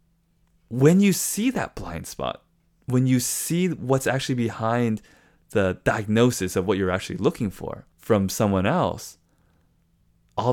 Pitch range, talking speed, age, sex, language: 105-140 Hz, 135 wpm, 20-39, male, English